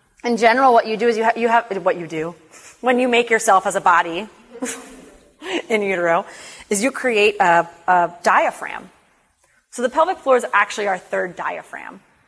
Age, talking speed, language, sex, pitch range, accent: 30-49, 180 wpm, English, female, 175-220 Hz, American